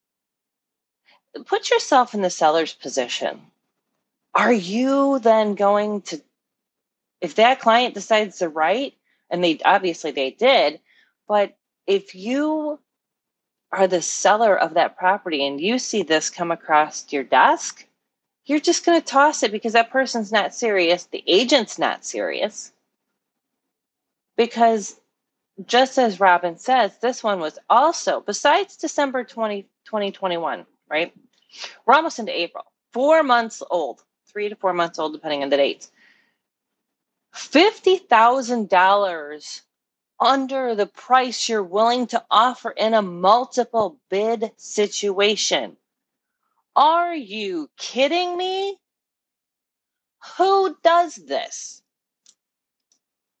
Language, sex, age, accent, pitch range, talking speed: English, female, 30-49, American, 190-265 Hz, 115 wpm